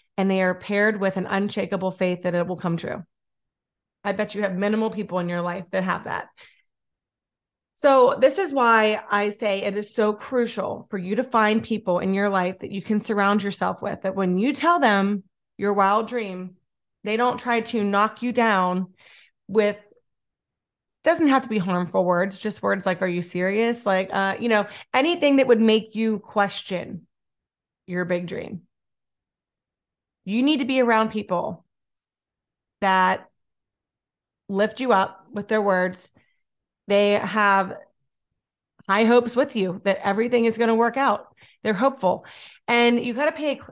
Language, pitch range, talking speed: English, 185-225 Hz, 170 wpm